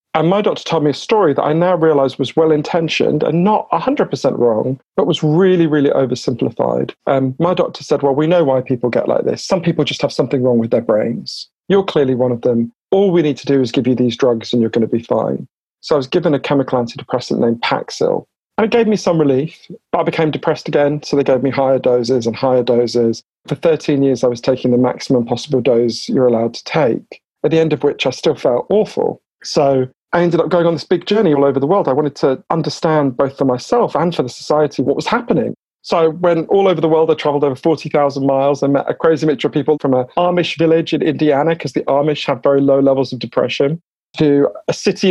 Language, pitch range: English, 135-170 Hz